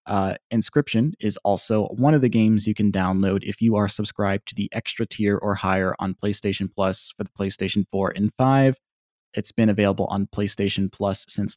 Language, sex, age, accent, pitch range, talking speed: English, male, 20-39, American, 100-115 Hz, 190 wpm